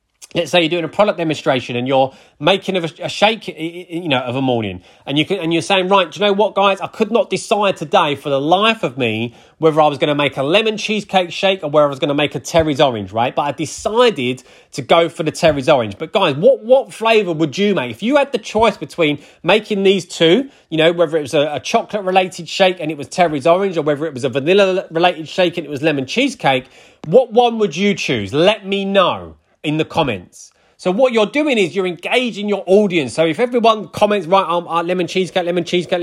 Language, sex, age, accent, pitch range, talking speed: English, male, 30-49, British, 150-200 Hz, 240 wpm